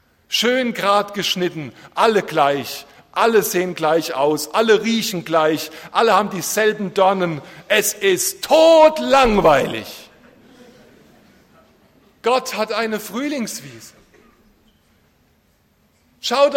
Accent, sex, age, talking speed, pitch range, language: German, male, 50-69, 85 wpm, 210-275 Hz, German